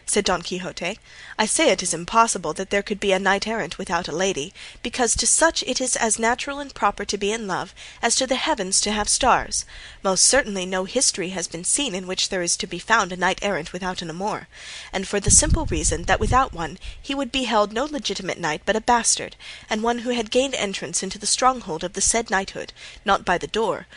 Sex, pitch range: female, 180-230 Hz